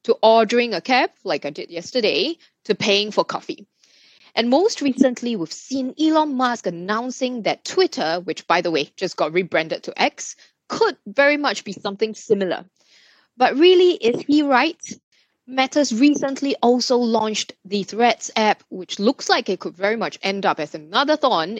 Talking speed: 170 wpm